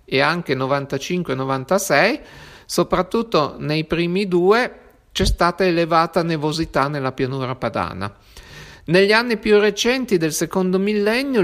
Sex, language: male, Italian